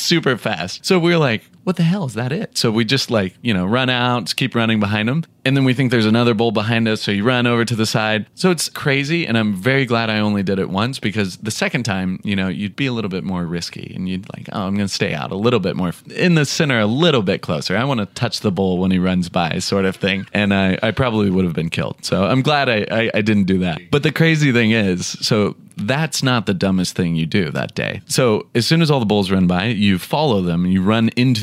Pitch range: 95-135 Hz